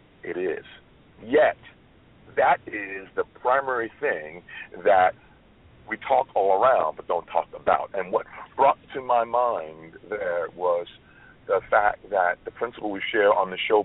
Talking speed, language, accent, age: 150 wpm, English, American, 50-69